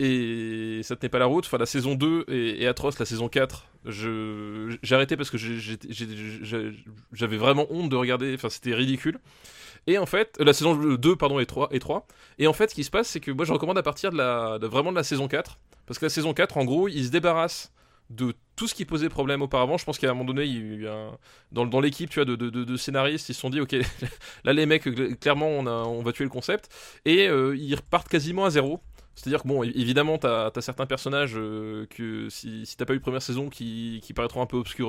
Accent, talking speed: French, 255 wpm